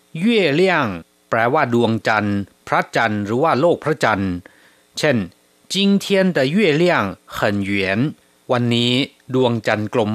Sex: male